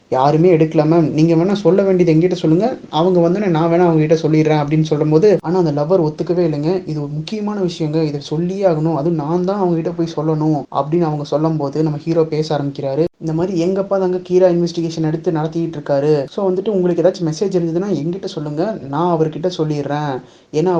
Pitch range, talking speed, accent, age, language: 155-180 Hz, 175 wpm, native, 20-39, Tamil